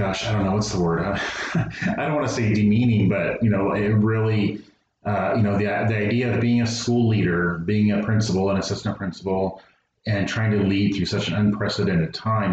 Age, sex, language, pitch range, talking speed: 30-49, male, English, 85-105 Hz, 210 wpm